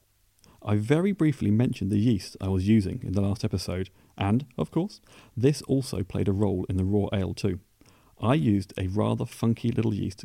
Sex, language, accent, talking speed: male, English, British, 195 wpm